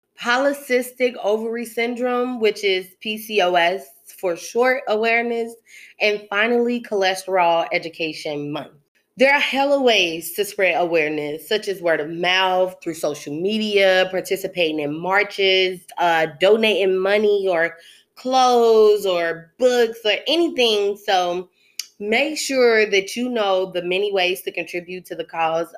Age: 20-39